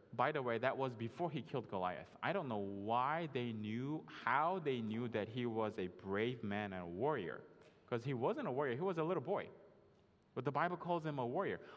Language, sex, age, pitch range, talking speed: English, male, 20-39, 125-180 Hz, 225 wpm